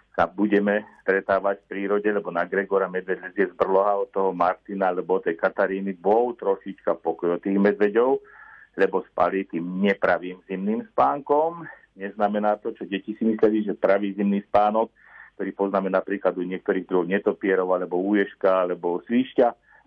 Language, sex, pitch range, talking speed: Slovak, male, 95-120 Hz, 145 wpm